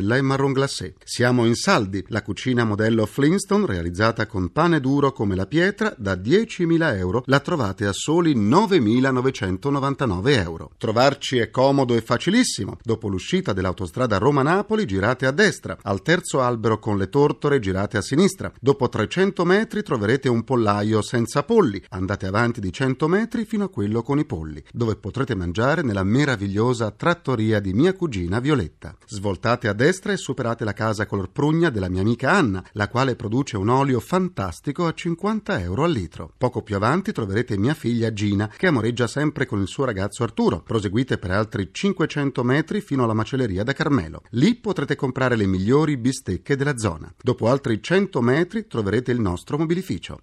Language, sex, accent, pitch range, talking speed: Italian, male, native, 105-145 Hz, 165 wpm